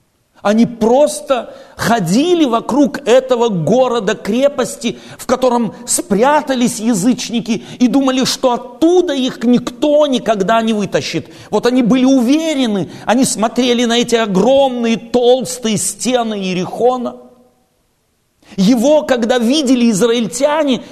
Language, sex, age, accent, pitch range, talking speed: Russian, male, 40-59, native, 215-260 Hz, 105 wpm